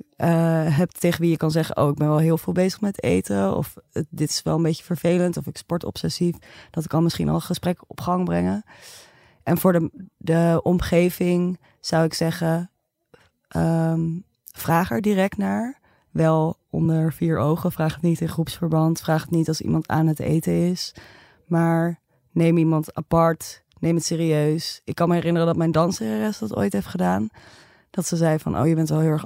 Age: 20-39